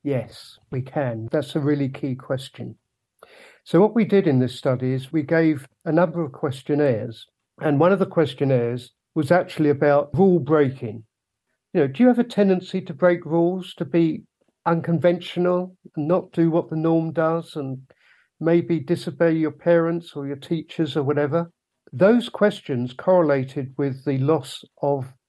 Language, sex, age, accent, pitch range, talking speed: English, male, 50-69, British, 135-170 Hz, 165 wpm